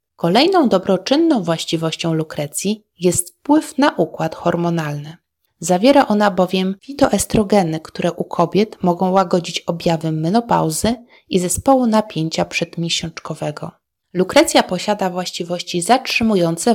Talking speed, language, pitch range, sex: 100 wpm, Polish, 170-225 Hz, female